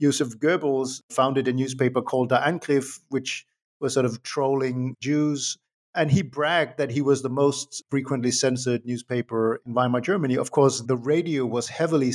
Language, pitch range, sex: English, 125-145 Hz, male